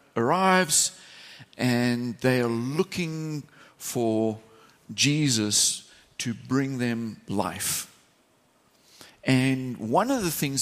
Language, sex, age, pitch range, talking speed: English, male, 50-69, 115-150 Hz, 90 wpm